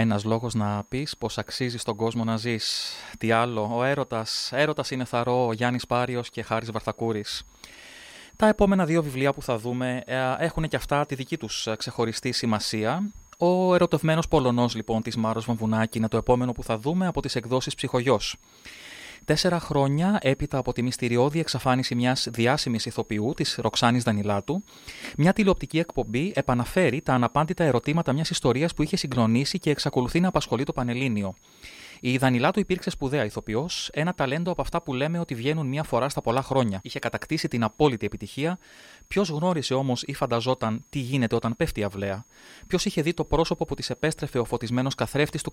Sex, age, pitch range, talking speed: male, 20-39, 115-155 Hz, 175 wpm